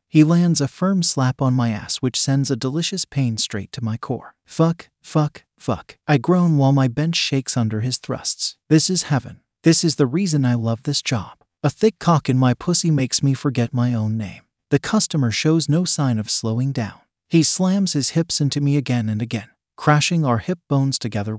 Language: English